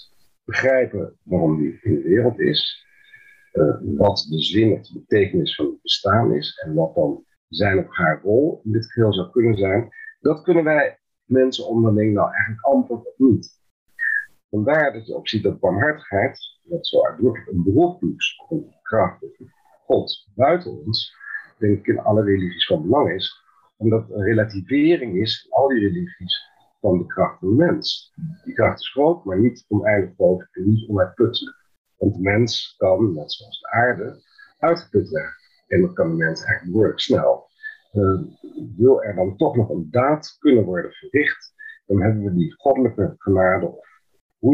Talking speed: 170 wpm